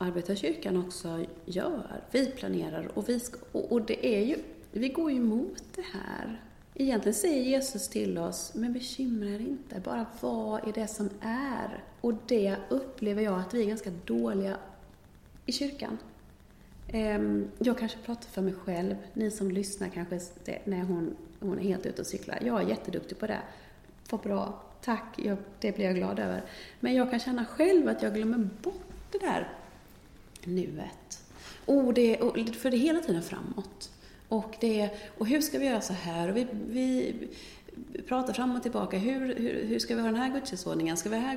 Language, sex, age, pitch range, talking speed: Swedish, female, 30-49, 190-255 Hz, 185 wpm